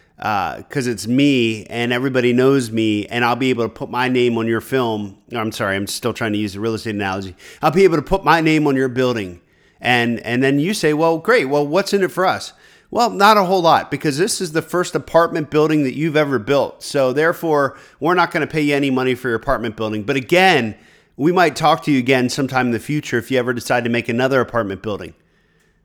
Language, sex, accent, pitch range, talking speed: English, male, American, 120-180 Hz, 240 wpm